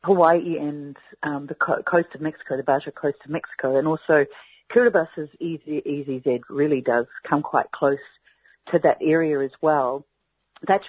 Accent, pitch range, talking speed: Australian, 135-190 Hz, 150 wpm